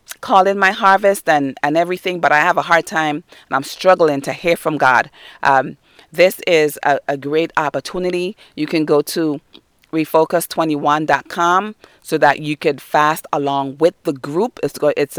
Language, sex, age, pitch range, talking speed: English, female, 40-59, 145-180 Hz, 170 wpm